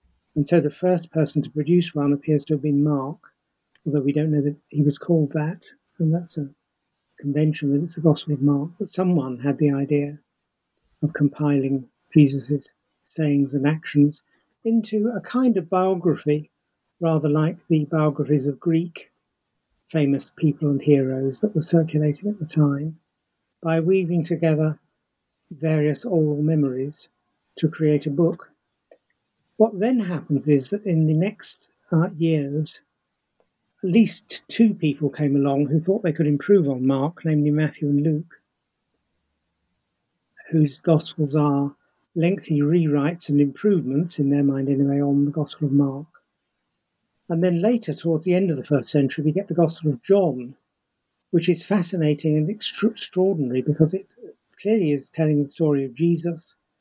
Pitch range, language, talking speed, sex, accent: 145-170 Hz, English, 155 wpm, male, British